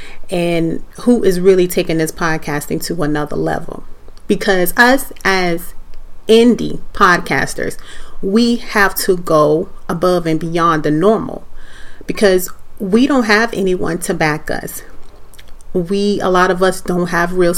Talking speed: 135 wpm